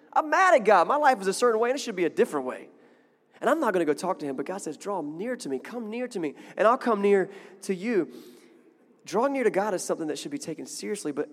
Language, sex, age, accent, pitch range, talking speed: English, male, 20-39, American, 150-245 Hz, 290 wpm